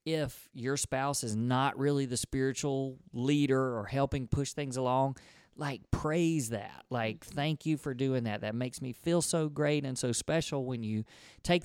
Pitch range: 120-150 Hz